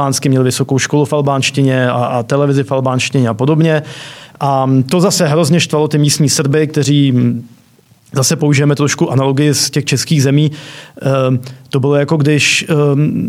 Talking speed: 145 wpm